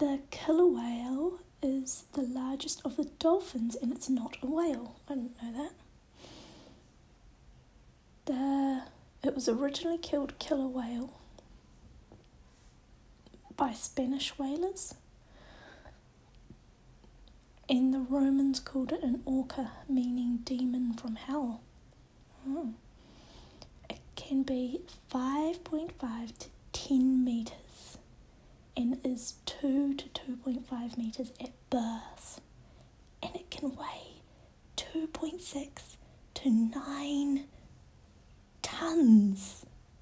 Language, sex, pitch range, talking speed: English, female, 235-280 Hz, 95 wpm